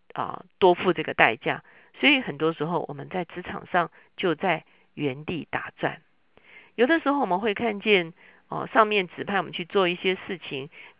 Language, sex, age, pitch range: Chinese, female, 50-69, 150-210 Hz